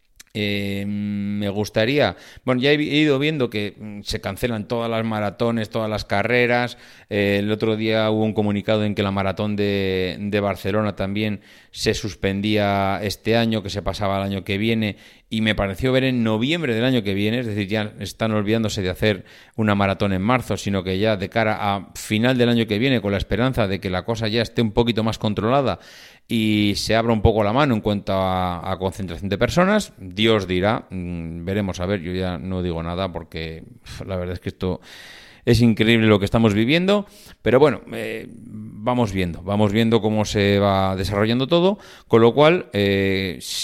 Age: 30-49